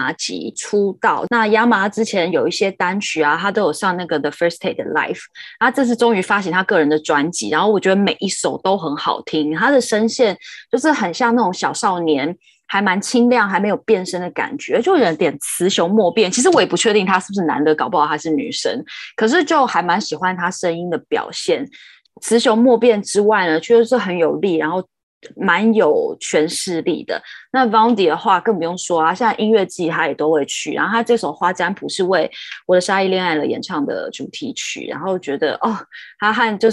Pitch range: 175-230 Hz